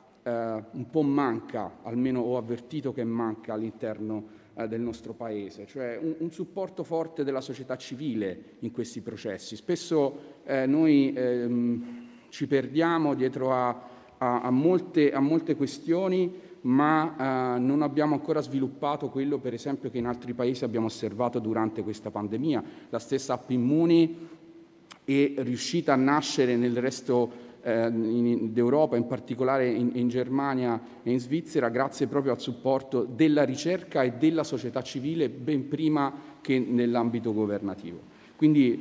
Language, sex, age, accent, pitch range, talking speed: Italian, male, 40-59, native, 120-145 Hz, 130 wpm